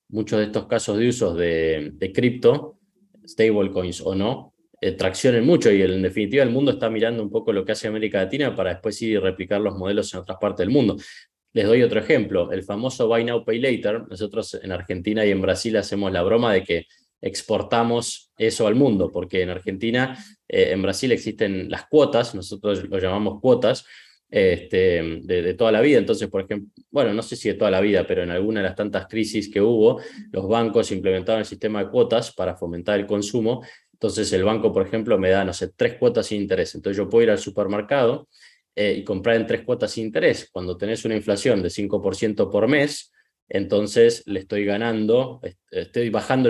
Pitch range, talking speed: 95-120 Hz, 200 wpm